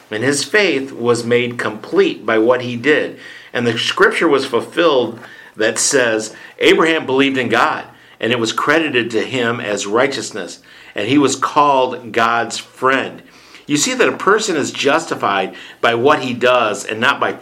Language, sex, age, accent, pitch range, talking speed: English, male, 50-69, American, 120-140 Hz, 170 wpm